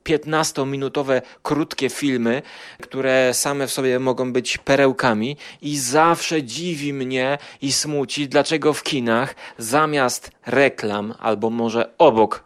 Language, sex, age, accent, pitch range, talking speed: Polish, male, 30-49, native, 115-155 Hz, 120 wpm